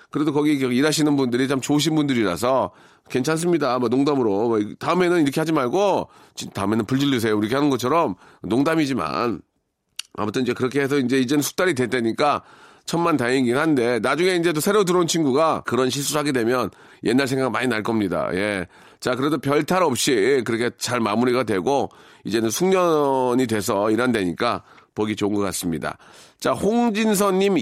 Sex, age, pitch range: male, 40-59, 120-180 Hz